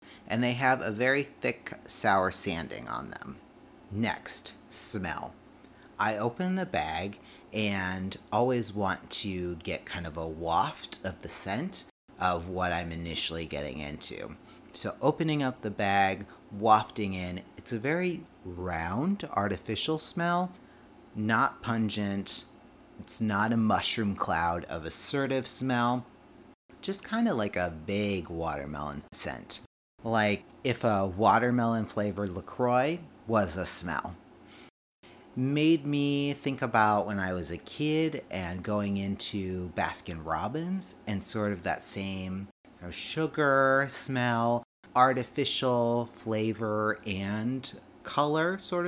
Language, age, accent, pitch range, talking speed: English, 30-49, American, 95-135 Hz, 125 wpm